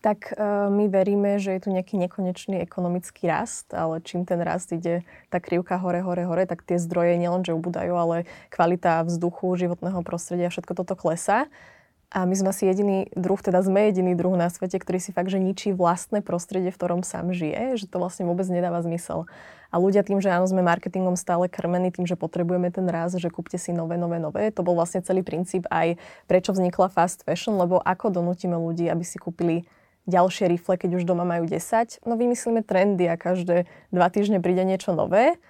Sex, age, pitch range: female, 20-39, 175-195 Hz